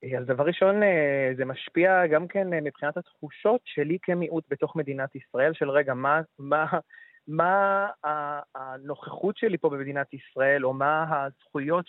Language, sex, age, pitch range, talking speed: Hebrew, male, 30-49, 140-165 Hz, 135 wpm